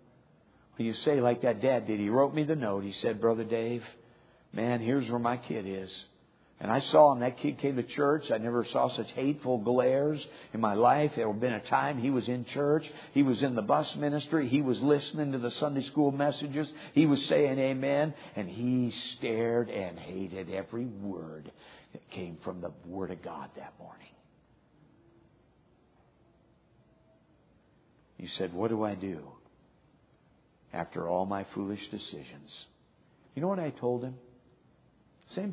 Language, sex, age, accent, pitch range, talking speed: English, male, 60-79, American, 115-150 Hz, 170 wpm